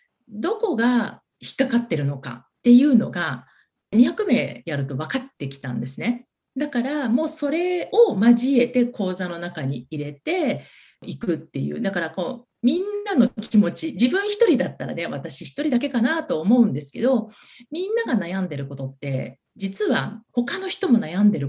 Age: 40-59